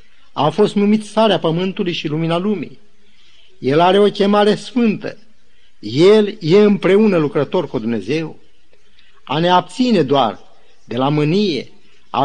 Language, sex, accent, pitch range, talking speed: Romanian, male, native, 150-205 Hz, 130 wpm